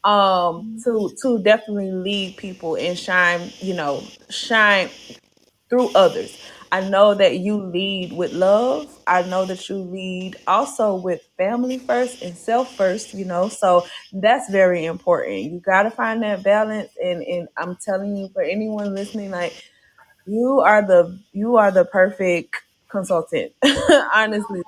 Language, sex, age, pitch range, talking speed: English, female, 20-39, 180-220 Hz, 150 wpm